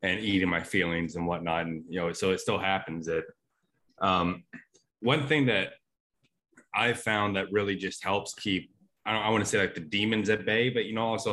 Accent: American